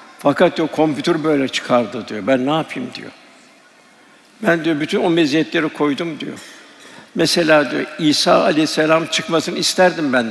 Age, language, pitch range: 60-79, Turkish, 160-180 Hz